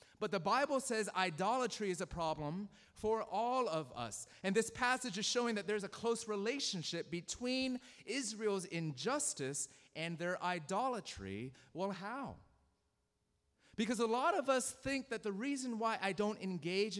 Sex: male